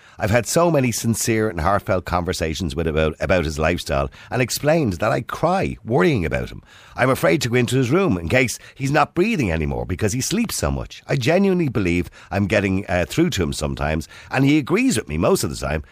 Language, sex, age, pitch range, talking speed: English, male, 50-69, 85-130 Hz, 220 wpm